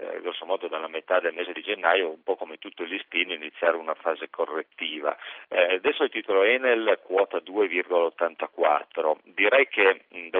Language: Italian